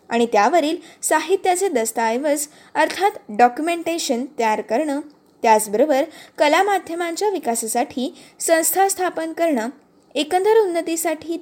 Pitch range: 245-335 Hz